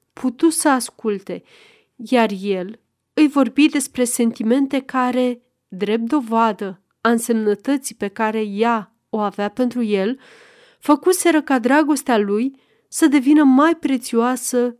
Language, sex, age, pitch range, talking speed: Romanian, female, 30-49, 215-280 Hz, 120 wpm